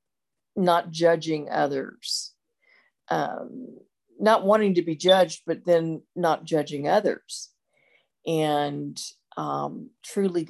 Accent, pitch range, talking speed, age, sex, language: American, 145-175 Hz, 95 wpm, 50-69, female, English